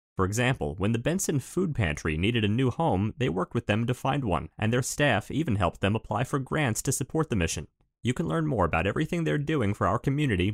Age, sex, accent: 30-49, male, American